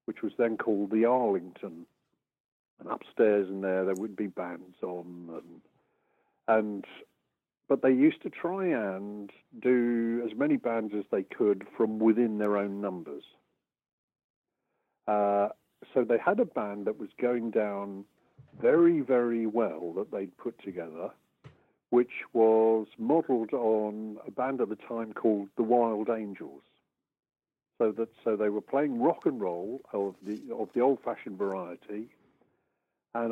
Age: 50-69